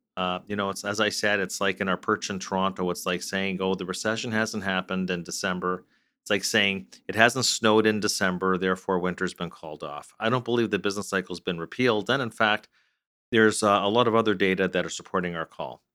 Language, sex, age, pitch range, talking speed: English, male, 40-59, 95-110 Hz, 220 wpm